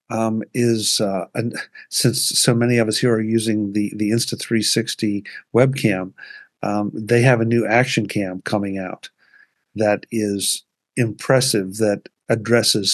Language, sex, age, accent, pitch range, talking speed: English, male, 50-69, American, 105-125 Hz, 145 wpm